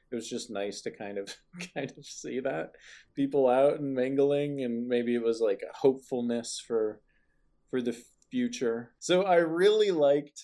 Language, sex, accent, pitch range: English, male, American, 115-140 Hz